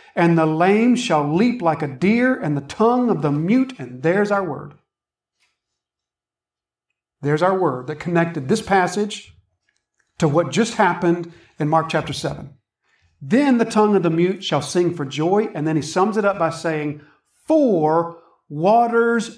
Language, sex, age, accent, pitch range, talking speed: English, male, 50-69, American, 145-220 Hz, 165 wpm